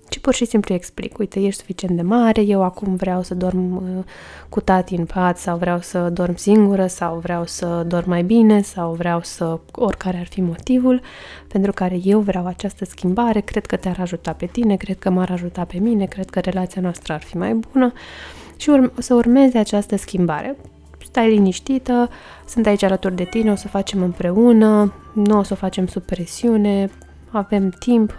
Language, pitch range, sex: Romanian, 180-220 Hz, female